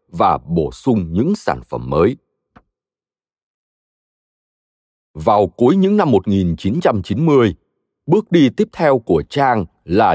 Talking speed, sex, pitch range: 110 wpm, male, 95-150 Hz